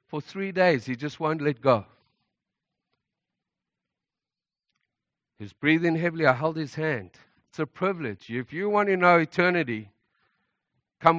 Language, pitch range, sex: English, 115-150 Hz, male